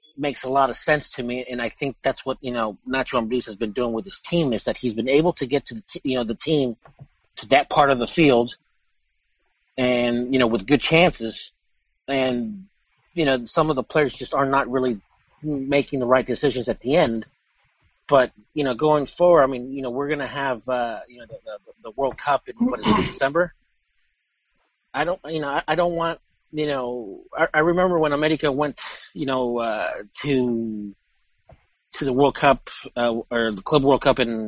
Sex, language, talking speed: male, English, 215 wpm